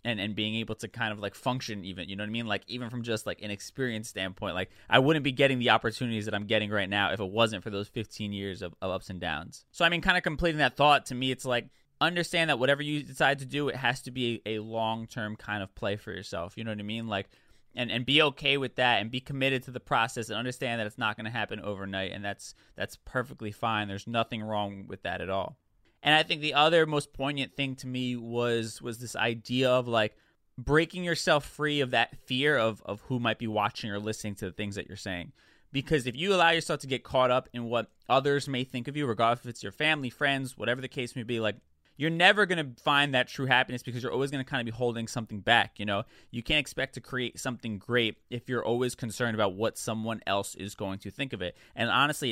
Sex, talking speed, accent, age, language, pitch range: male, 260 wpm, American, 20-39, English, 110-135 Hz